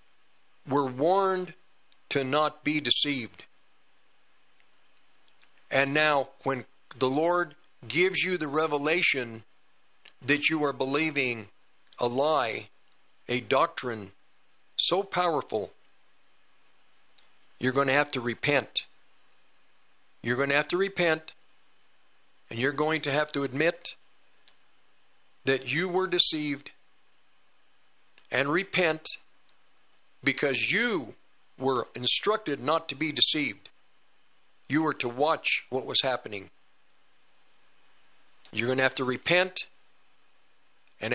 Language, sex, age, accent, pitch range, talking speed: English, male, 50-69, American, 130-160 Hz, 105 wpm